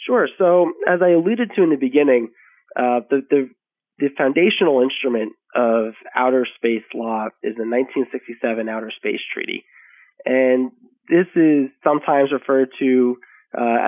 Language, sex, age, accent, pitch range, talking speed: English, male, 20-39, American, 115-140 Hz, 140 wpm